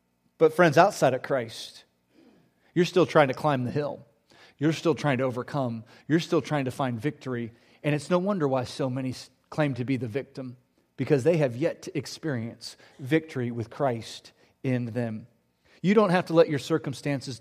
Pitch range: 130-195 Hz